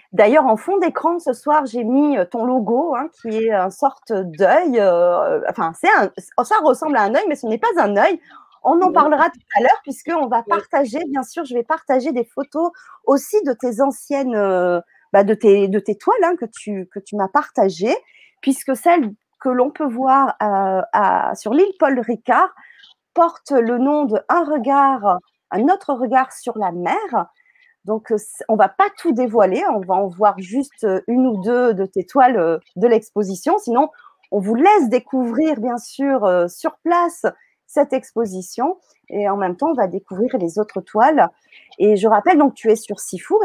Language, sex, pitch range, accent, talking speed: French, female, 210-305 Hz, French, 185 wpm